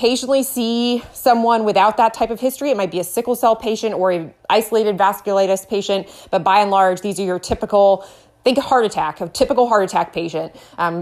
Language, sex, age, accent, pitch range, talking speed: English, female, 20-39, American, 195-240 Hz, 205 wpm